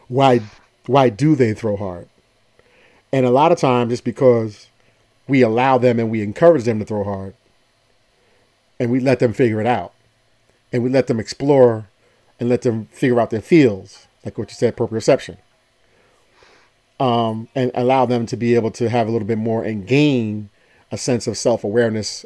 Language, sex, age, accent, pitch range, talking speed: English, male, 40-59, American, 110-135 Hz, 180 wpm